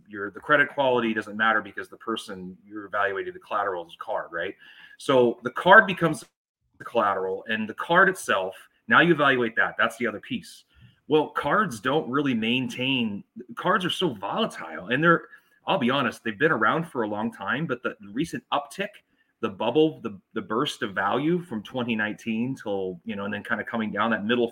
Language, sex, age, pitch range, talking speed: English, male, 30-49, 110-155 Hz, 195 wpm